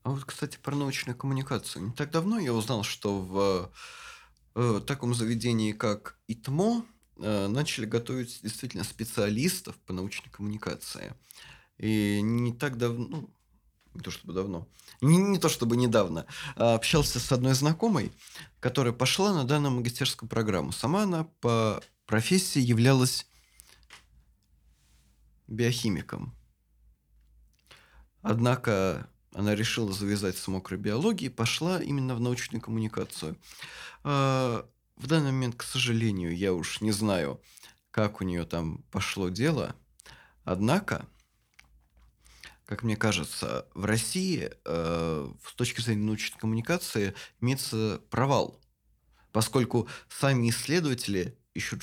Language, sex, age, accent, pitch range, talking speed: Russian, male, 20-39, native, 100-130 Hz, 110 wpm